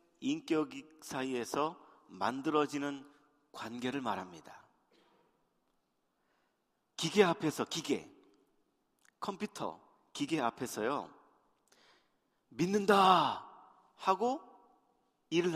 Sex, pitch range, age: male, 135-220 Hz, 40-59